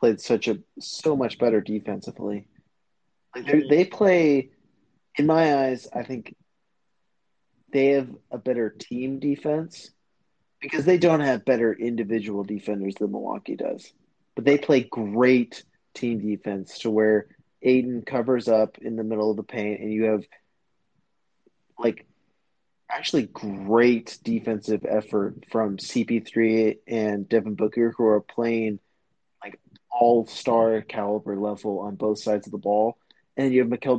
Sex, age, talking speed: male, 30-49, 140 wpm